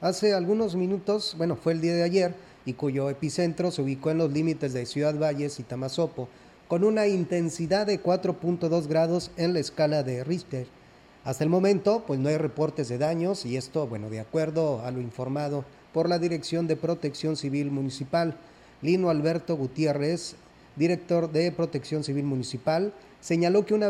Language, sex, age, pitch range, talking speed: Spanish, male, 30-49, 145-175 Hz, 170 wpm